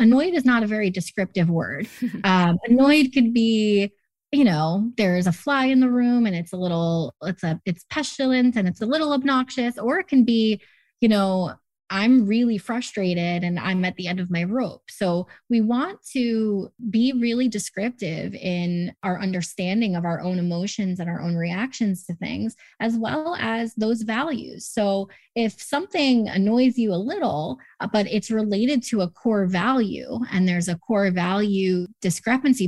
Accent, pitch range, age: American, 185-245 Hz, 20-39